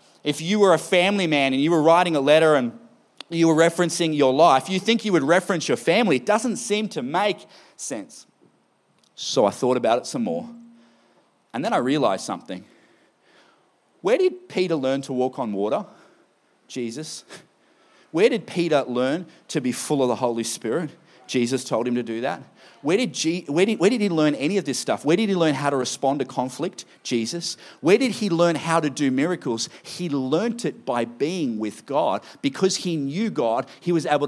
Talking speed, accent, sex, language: 195 wpm, Australian, male, English